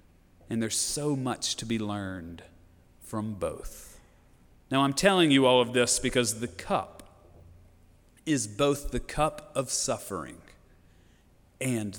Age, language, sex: 40-59, English, male